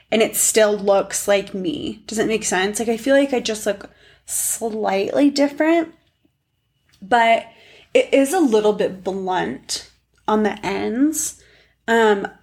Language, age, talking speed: English, 20-39, 145 wpm